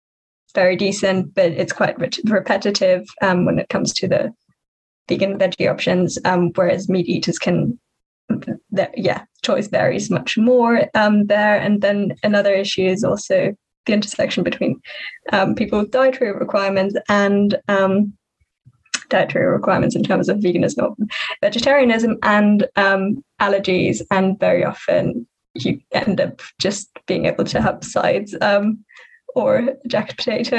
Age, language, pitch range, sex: 10-29, English, 195-245 Hz, female